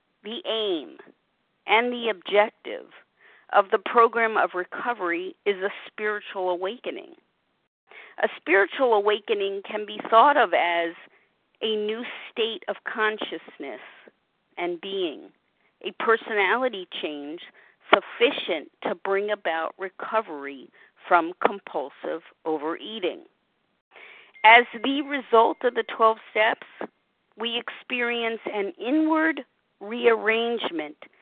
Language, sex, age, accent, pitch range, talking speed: English, female, 50-69, American, 200-265 Hz, 100 wpm